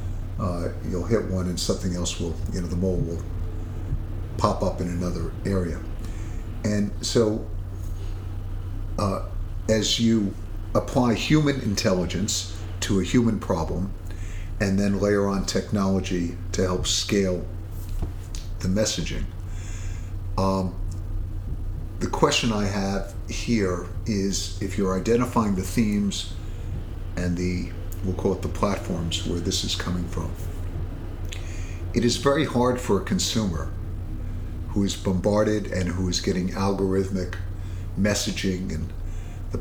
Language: English